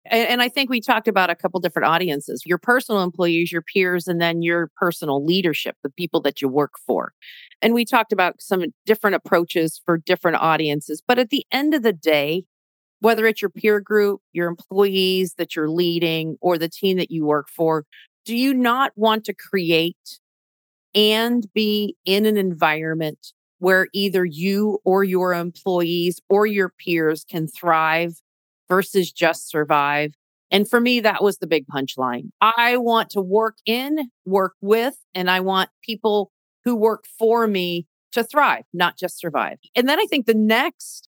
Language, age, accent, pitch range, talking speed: English, 40-59, American, 165-225 Hz, 175 wpm